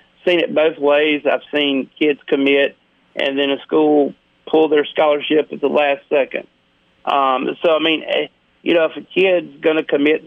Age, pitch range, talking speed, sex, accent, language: 40-59, 130-160 Hz, 180 wpm, male, American, English